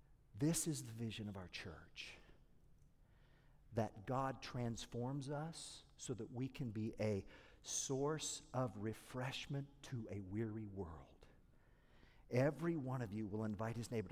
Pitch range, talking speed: 100-135 Hz, 135 wpm